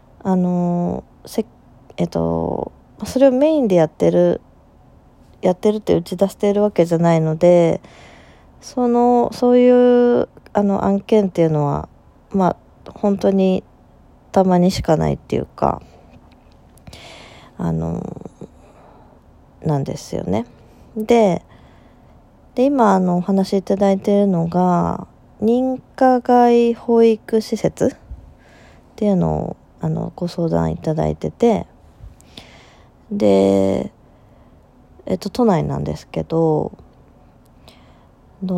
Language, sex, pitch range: Japanese, female, 150-205 Hz